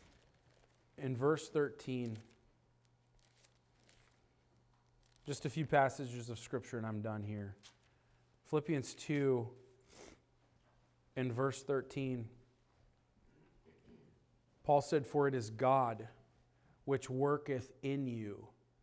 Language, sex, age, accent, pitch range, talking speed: English, male, 40-59, American, 120-135 Hz, 90 wpm